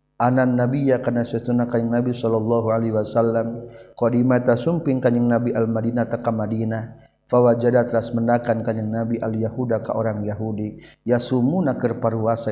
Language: Indonesian